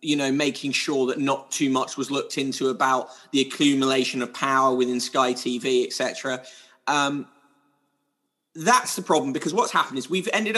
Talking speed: 165 wpm